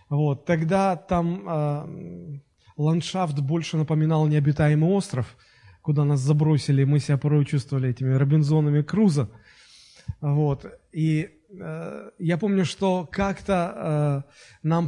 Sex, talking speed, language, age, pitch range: male, 100 wpm, Russian, 20-39, 140-180 Hz